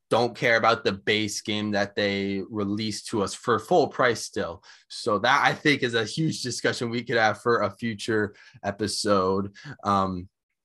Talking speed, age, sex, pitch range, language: 175 wpm, 20-39, male, 100-120 Hz, English